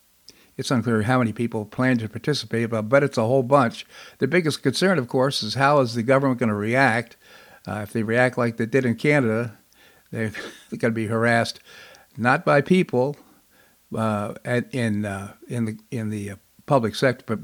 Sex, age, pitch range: male, 60-79, 110-145 Hz